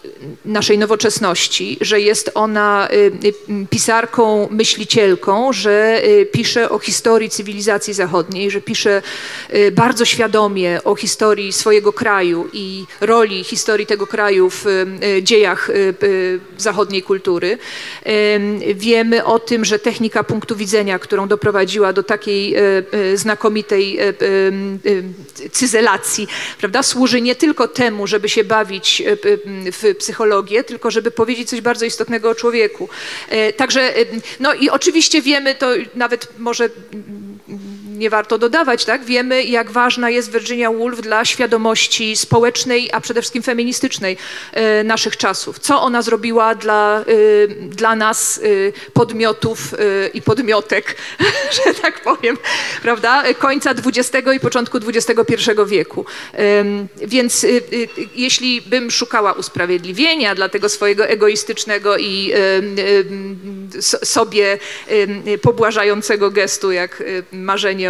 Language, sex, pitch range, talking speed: Polish, female, 205-240 Hz, 110 wpm